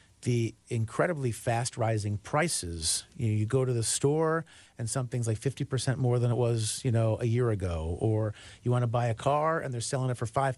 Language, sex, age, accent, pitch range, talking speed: English, male, 40-59, American, 115-145 Hz, 215 wpm